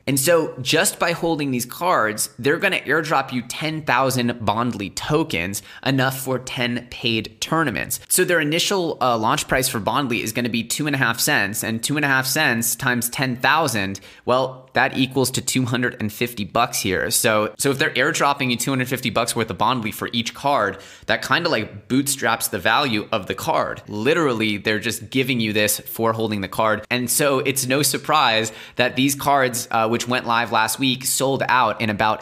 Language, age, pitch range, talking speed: English, 20-39, 110-130 Hz, 190 wpm